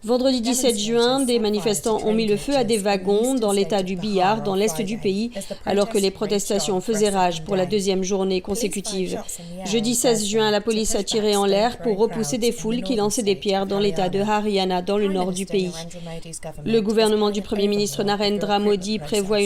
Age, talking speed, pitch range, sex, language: 40-59, 200 wpm, 200-235 Hz, female, French